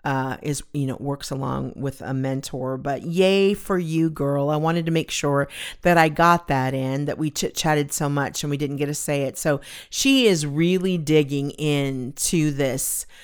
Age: 40-59